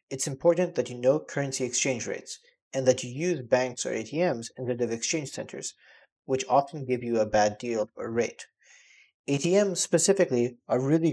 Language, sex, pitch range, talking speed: English, male, 120-160 Hz, 175 wpm